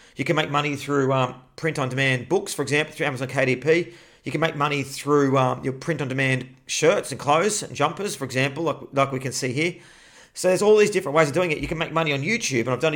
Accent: Australian